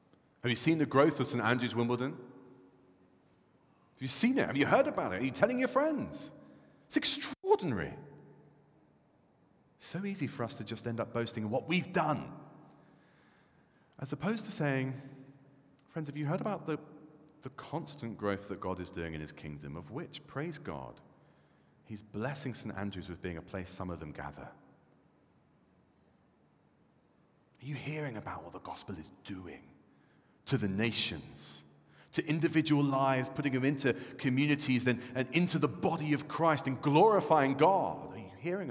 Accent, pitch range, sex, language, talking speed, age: British, 95-155 Hz, male, English, 165 wpm, 40-59